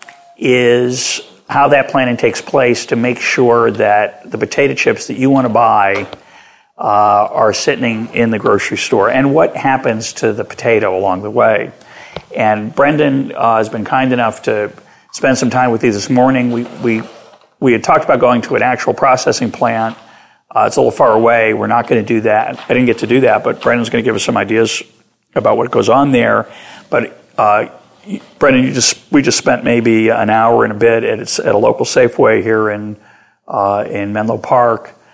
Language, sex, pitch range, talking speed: English, male, 110-125 Hz, 195 wpm